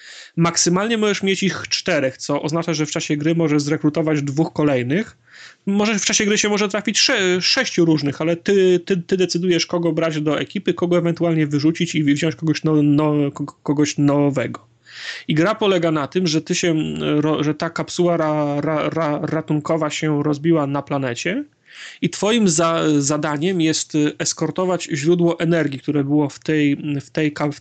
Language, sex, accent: Polish, male, native